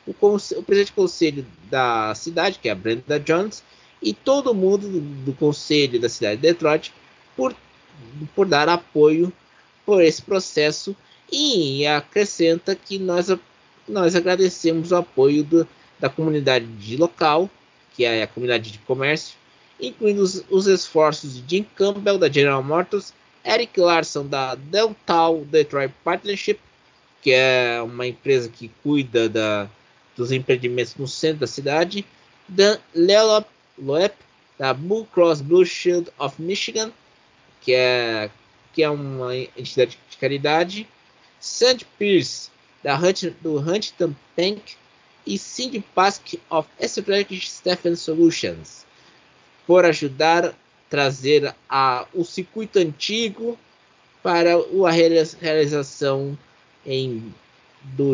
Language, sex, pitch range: Portuguese, male, 135-190 Hz